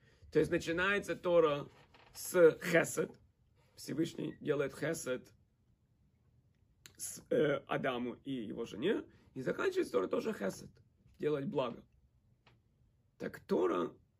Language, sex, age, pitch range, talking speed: Russian, male, 40-59, 125-175 Hz, 100 wpm